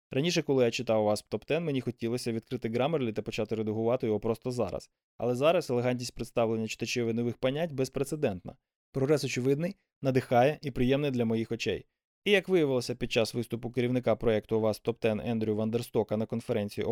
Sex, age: male, 20-39